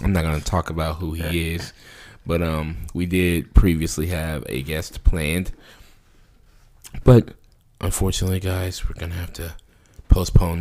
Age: 20-39